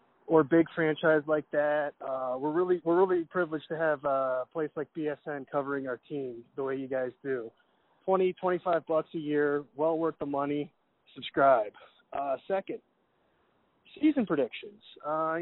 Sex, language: male, English